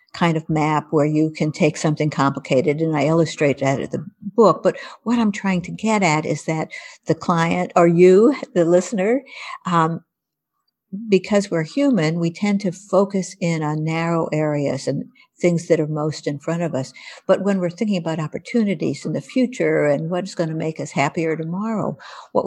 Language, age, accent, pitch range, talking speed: English, 60-79, American, 160-195 Hz, 185 wpm